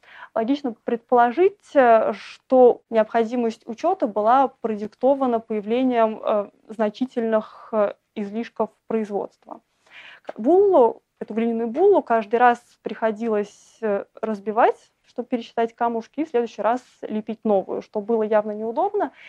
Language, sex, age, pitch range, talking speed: Russian, female, 20-39, 215-255 Hz, 105 wpm